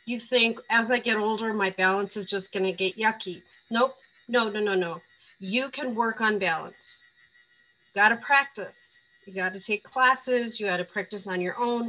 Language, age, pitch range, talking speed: English, 40-59, 195-245 Hz, 195 wpm